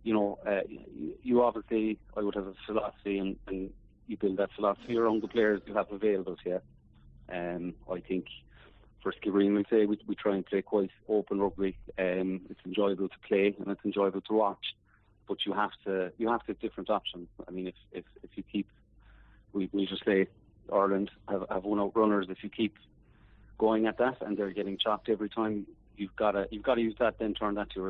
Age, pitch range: 30-49, 95-110 Hz